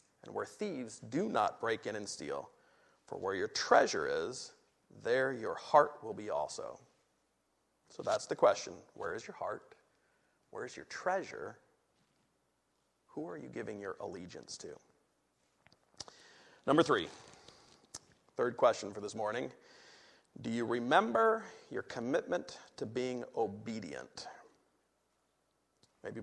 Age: 40-59